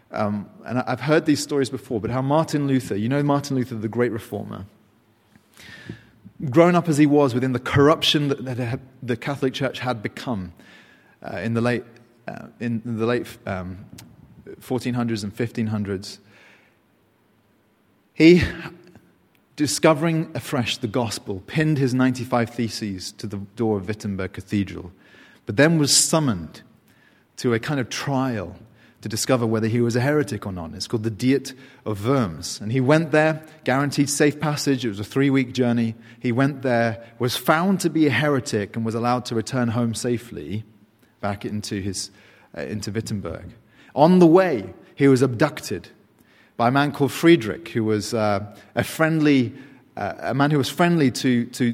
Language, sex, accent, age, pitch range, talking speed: English, male, British, 30-49, 110-140 Hz, 160 wpm